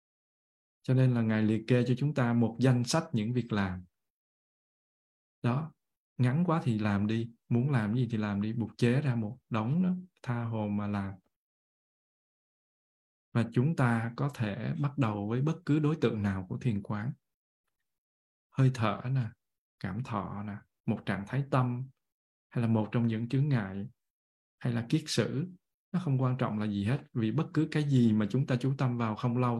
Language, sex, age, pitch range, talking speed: Vietnamese, male, 20-39, 110-135 Hz, 190 wpm